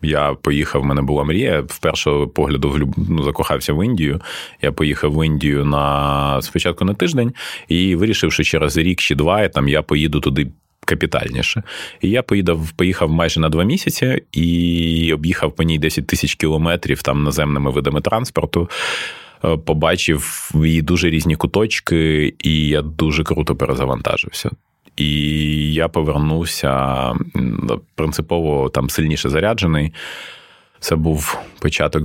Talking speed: 130 wpm